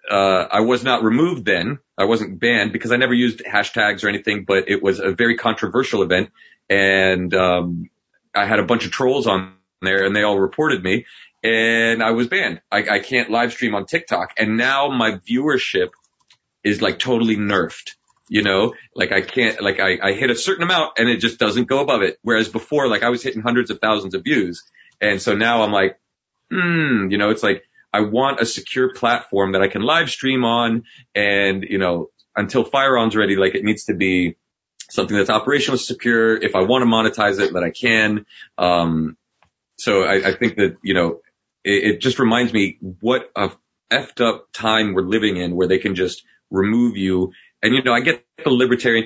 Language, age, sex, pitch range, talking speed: English, 30-49, male, 100-120 Hz, 205 wpm